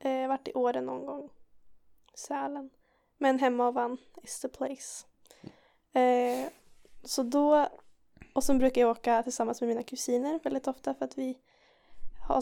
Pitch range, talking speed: 250-275 Hz, 145 wpm